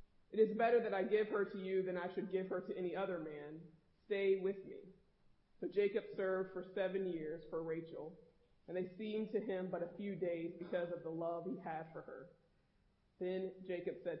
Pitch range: 170-195 Hz